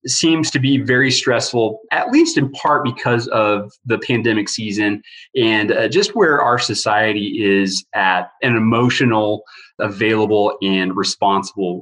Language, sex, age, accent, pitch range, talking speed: English, male, 30-49, American, 105-145 Hz, 140 wpm